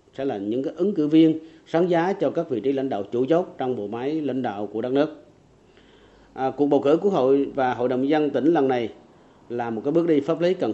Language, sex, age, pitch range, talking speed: Vietnamese, male, 40-59, 120-155 Hz, 255 wpm